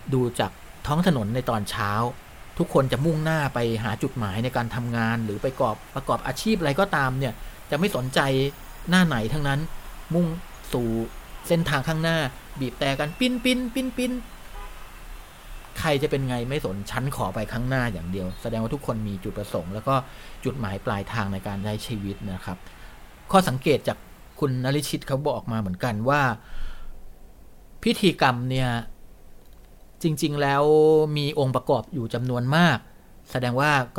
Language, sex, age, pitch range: Thai, male, 30-49, 115-150 Hz